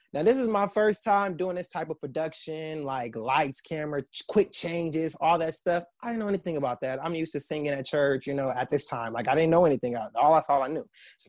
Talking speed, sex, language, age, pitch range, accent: 255 wpm, male, English, 20-39, 125-165 Hz, American